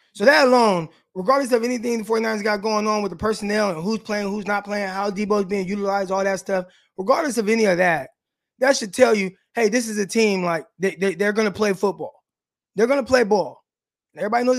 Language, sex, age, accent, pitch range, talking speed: English, male, 20-39, American, 180-235 Hz, 230 wpm